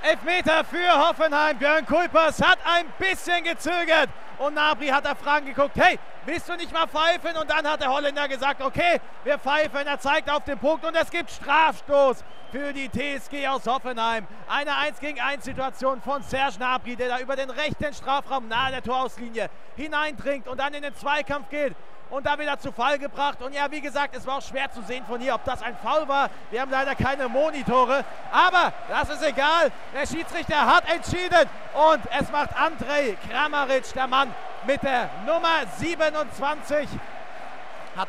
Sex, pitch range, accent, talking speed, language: male, 265-315 Hz, German, 185 wpm, German